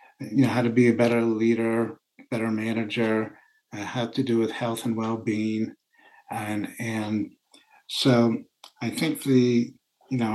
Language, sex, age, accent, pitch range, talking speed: English, male, 60-79, American, 115-130 Hz, 150 wpm